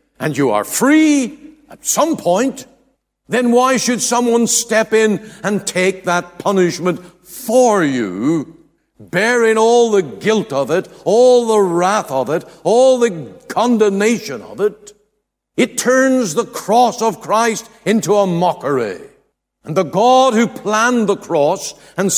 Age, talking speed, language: 60-79, 140 wpm, English